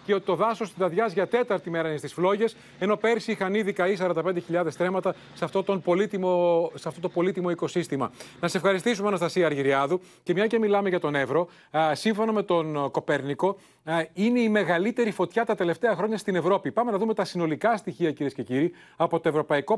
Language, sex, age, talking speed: Greek, male, 30-49, 190 wpm